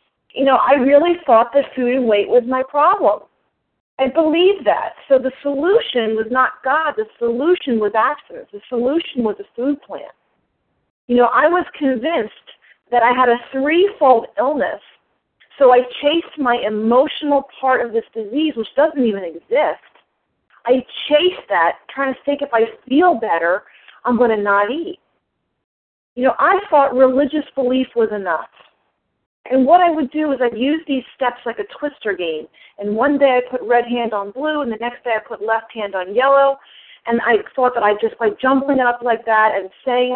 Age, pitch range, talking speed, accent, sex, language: 40-59, 230-290 Hz, 185 wpm, American, female, English